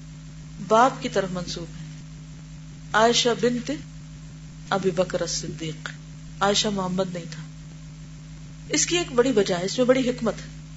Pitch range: 155-245 Hz